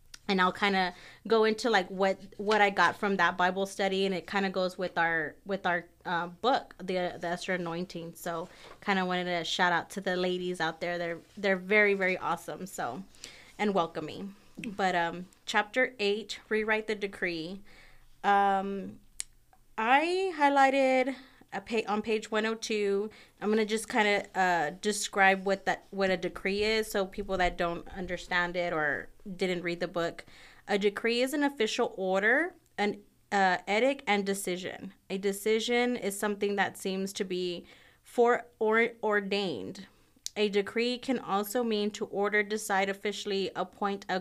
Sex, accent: female, American